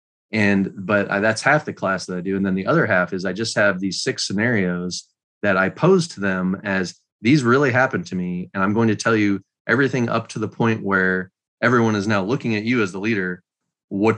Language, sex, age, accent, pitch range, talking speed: English, male, 20-39, American, 95-115 Hz, 230 wpm